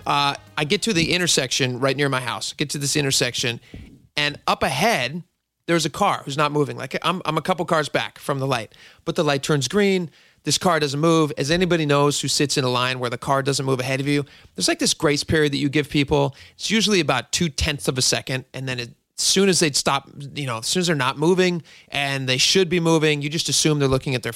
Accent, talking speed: American, 250 wpm